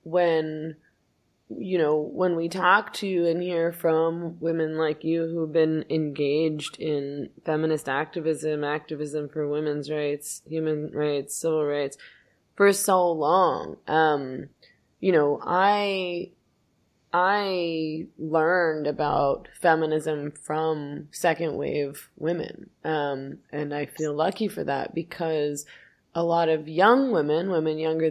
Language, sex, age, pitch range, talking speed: English, female, 20-39, 150-180 Hz, 120 wpm